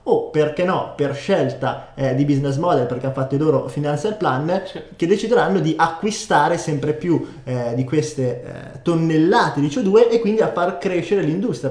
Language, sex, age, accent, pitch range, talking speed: Italian, male, 20-39, native, 145-185 Hz, 180 wpm